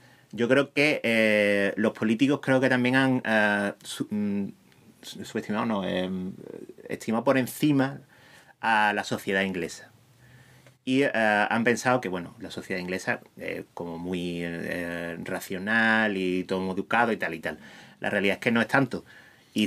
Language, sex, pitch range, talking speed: Spanish, male, 100-125 Hz, 155 wpm